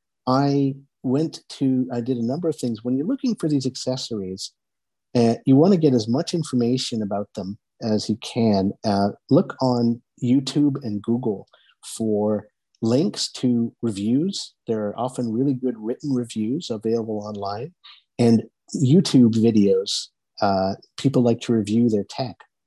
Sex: male